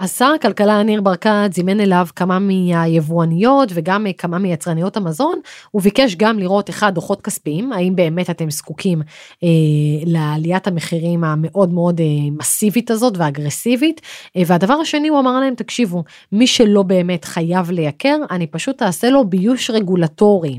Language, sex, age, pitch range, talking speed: Hebrew, female, 30-49, 180-240 Hz, 150 wpm